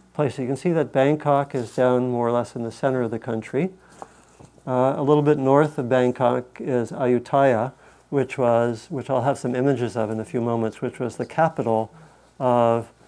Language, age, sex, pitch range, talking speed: English, 50-69, male, 115-135 Hz, 195 wpm